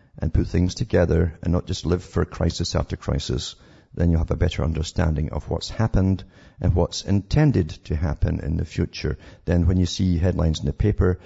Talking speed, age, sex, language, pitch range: 195 wpm, 50-69, male, English, 85-100 Hz